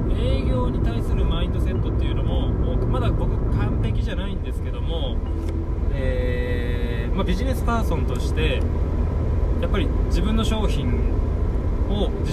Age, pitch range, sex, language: 20-39, 80-110 Hz, male, Japanese